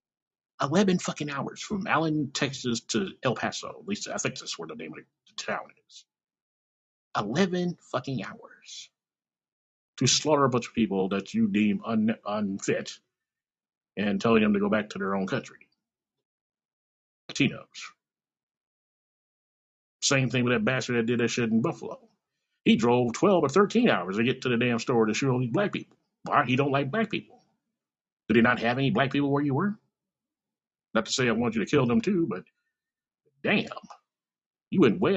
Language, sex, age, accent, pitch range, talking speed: English, male, 50-69, American, 115-185 Hz, 180 wpm